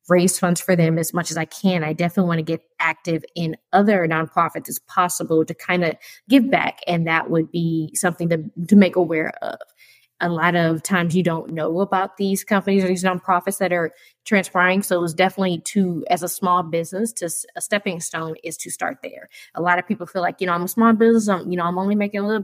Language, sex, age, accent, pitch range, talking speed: English, female, 10-29, American, 170-200 Hz, 235 wpm